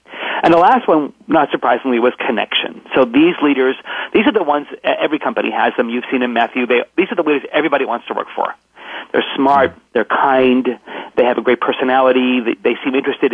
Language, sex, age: English, male, 40-59